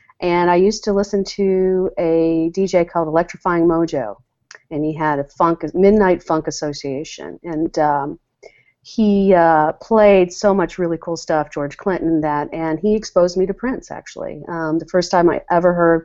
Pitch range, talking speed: 150-185 Hz, 175 wpm